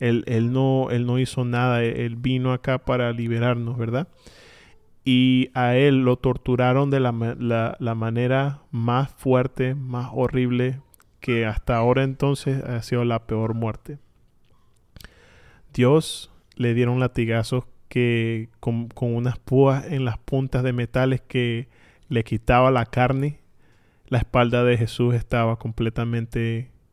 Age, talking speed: 20-39, 135 wpm